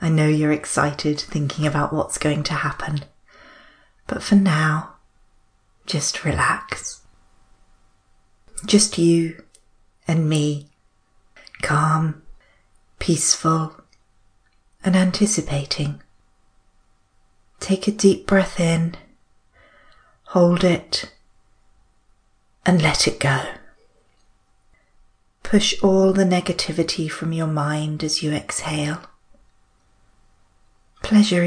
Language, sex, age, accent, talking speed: English, female, 30-49, British, 85 wpm